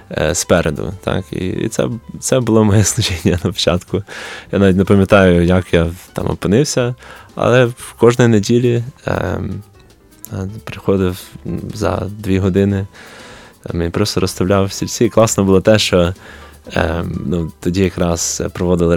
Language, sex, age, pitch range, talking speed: Ukrainian, male, 20-39, 90-105 Hz, 125 wpm